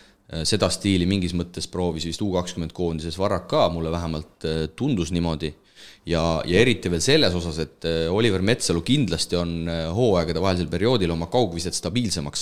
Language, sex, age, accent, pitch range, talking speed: English, male, 30-49, Finnish, 80-100 Hz, 145 wpm